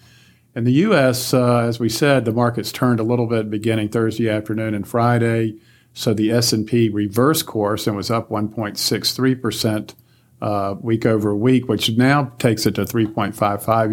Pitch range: 105-120 Hz